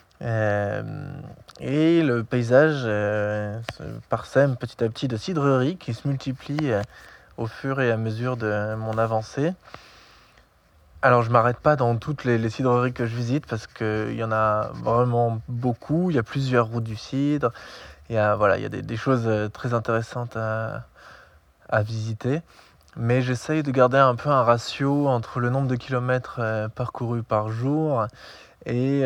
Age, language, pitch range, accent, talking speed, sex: 20-39, French, 110-130 Hz, French, 165 wpm, male